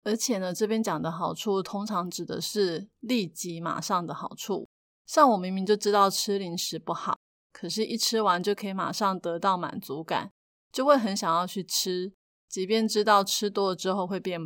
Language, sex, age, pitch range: Chinese, female, 20-39, 180-220 Hz